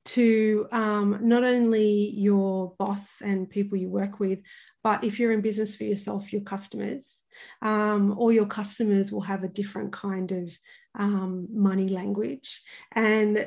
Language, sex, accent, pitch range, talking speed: English, female, Australian, 200-225 Hz, 150 wpm